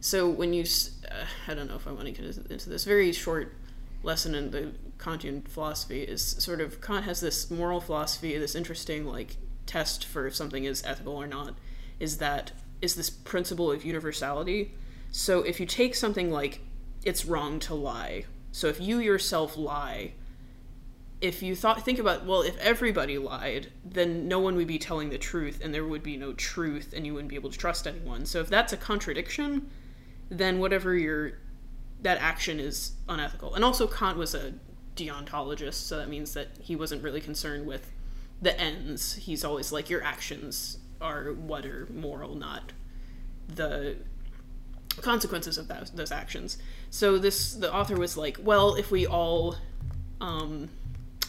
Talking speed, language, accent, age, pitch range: 175 wpm, English, American, 20-39, 145-180 Hz